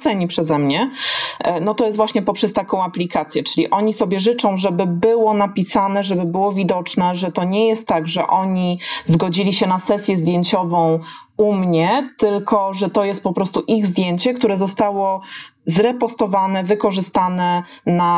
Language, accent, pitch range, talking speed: Polish, native, 175-220 Hz, 155 wpm